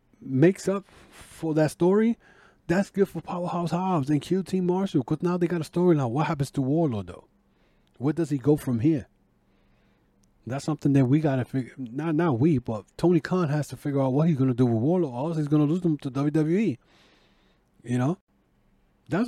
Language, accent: English, American